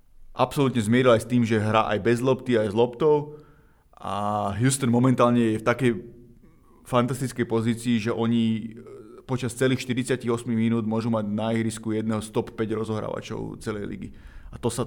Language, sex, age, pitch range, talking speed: Slovak, male, 20-39, 110-120 Hz, 170 wpm